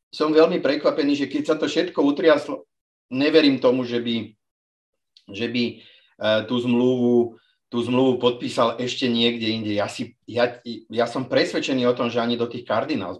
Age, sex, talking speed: 40-59, male, 165 wpm